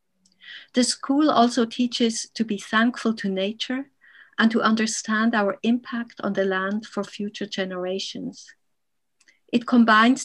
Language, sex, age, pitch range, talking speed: English, female, 50-69, 200-235 Hz, 130 wpm